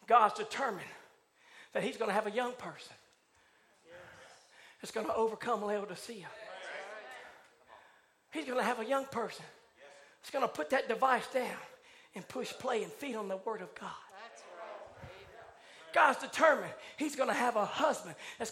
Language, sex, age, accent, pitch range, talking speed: English, male, 40-59, American, 270-360 Hz, 155 wpm